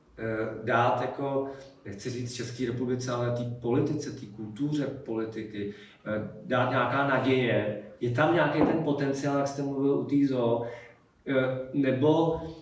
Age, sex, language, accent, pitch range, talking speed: 40-59, male, Czech, native, 115-150 Hz, 120 wpm